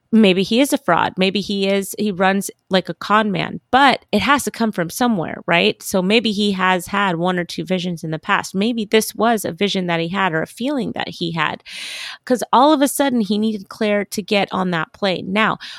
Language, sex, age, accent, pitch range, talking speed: English, female, 30-49, American, 180-220 Hz, 235 wpm